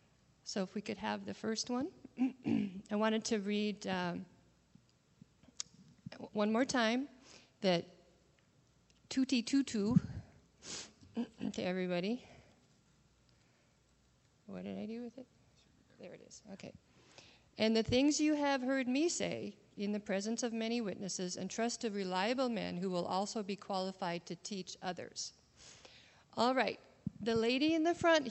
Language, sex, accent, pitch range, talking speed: English, female, American, 185-240 Hz, 140 wpm